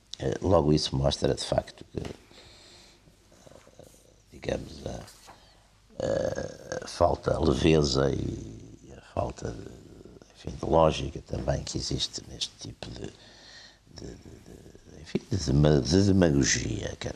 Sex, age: male, 60-79